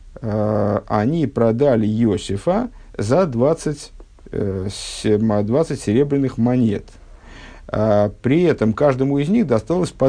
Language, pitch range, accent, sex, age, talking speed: Russian, 100-135 Hz, native, male, 50-69, 90 wpm